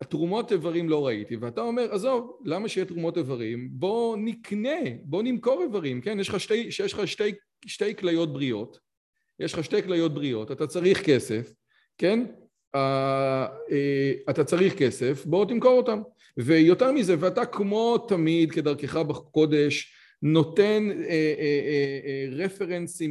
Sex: male